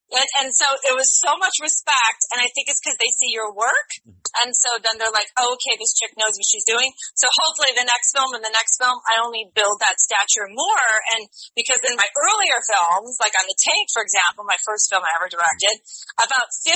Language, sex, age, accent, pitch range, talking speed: English, female, 30-49, American, 200-250 Hz, 230 wpm